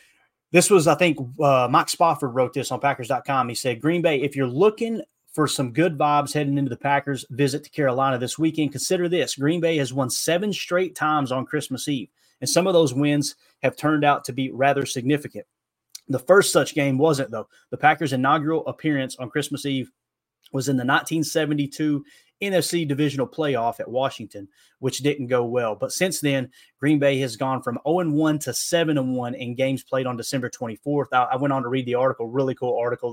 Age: 30-49